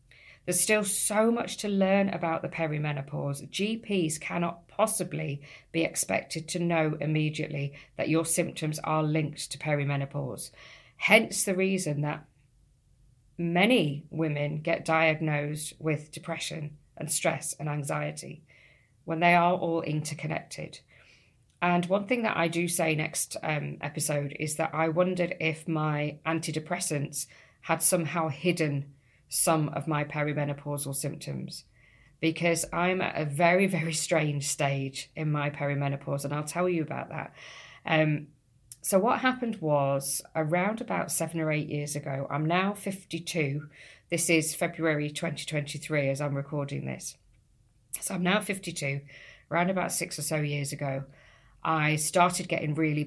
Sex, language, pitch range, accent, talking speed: female, English, 145-170 Hz, British, 140 wpm